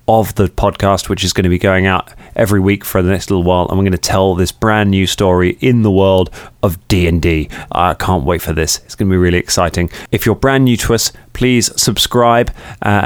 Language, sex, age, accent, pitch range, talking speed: English, male, 20-39, British, 90-110 Hz, 230 wpm